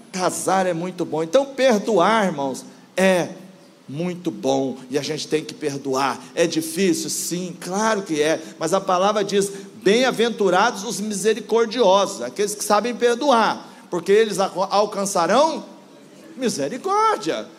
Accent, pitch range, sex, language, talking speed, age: Brazilian, 185-230 Hz, male, Portuguese, 135 wpm, 40-59